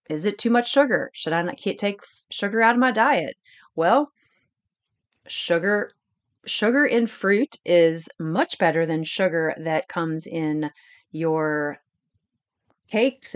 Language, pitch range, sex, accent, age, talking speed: English, 165-225 Hz, female, American, 30-49, 130 wpm